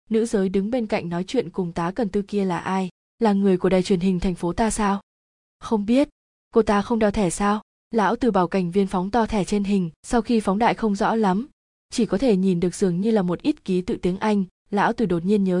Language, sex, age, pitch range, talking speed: Vietnamese, female, 20-39, 185-225 Hz, 260 wpm